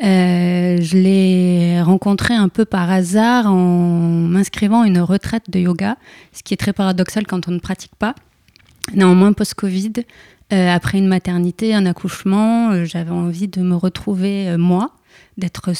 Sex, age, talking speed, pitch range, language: female, 30-49, 160 wpm, 175-205 Hz, French